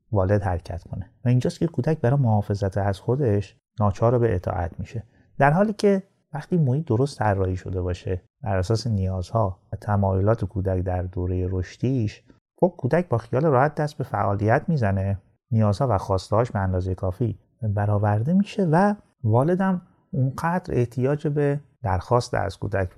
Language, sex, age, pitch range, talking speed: Persian, male, 30-49, 100-135 Hz, 155 wpm